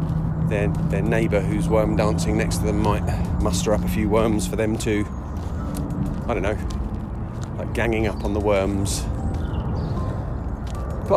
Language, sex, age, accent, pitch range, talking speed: English, male, 30-49, British, 90-110 Hz, 150 wpm